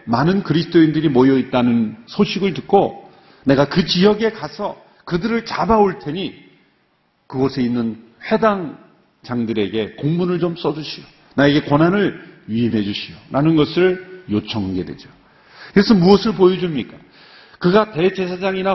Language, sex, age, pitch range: Korean, male, 40-59, 140-205 Hz